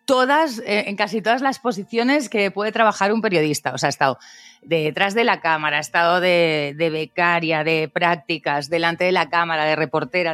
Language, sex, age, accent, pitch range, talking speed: Spanish, female, 30-49, Spanish, 155-210 Hz, 190 wpm